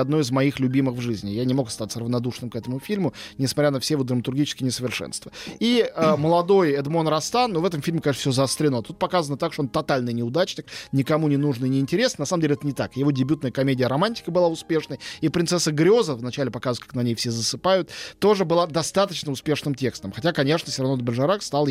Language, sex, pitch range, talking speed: Russian, male, 135-175 Hz, 210 wpm